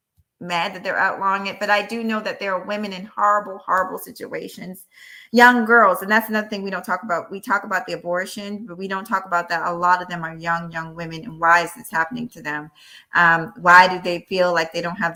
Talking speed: 245 wpm